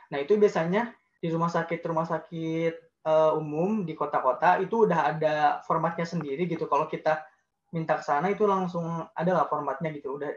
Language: Indonesian